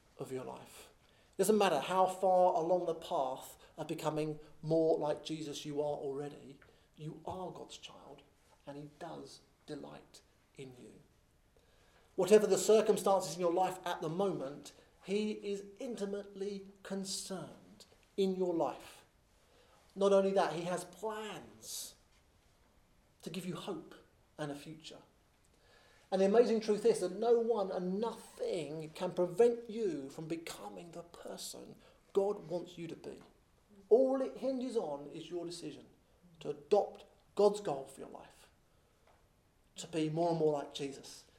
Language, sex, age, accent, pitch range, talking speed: English, male, 40-59, British, 150-200 Hz, 145 wpm